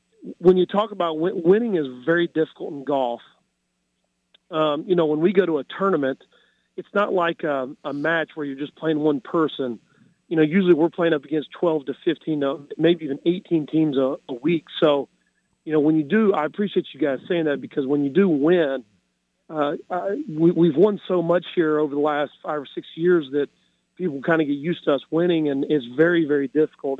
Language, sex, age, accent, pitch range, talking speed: English, male, 40-59, American, 145-175 Hz, 205 wpm